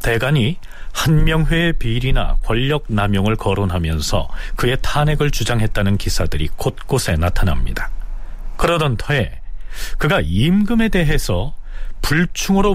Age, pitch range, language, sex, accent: 40-59, 100-160 Hz, Korean, male, native